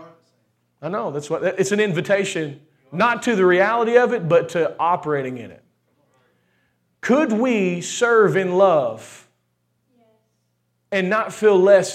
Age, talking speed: 40-59, 135 wpm